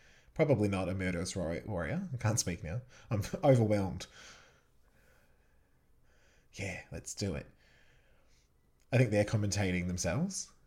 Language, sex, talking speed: English, male, 110 wpm